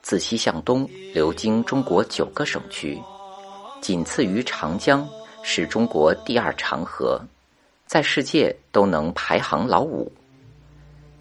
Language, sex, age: Chinese, male, 50-69